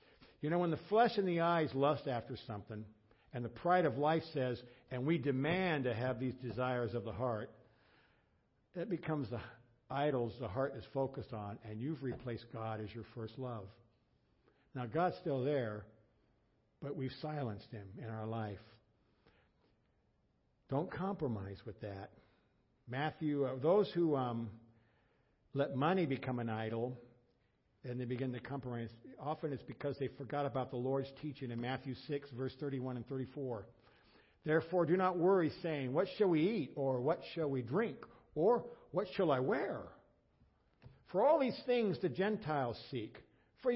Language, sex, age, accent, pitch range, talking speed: English, male, 60-79, American, 115-160 Hz, 160 wpm